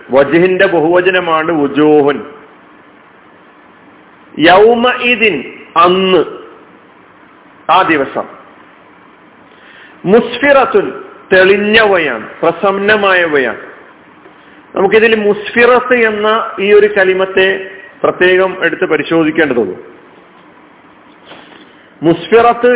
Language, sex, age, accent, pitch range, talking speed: Malayalam, male, 50-69, native, 165-225 Hz, 45 wpm